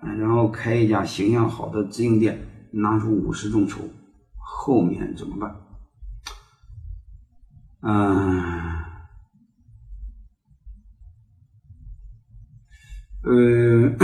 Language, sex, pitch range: Chinese, male, 100-130 Hz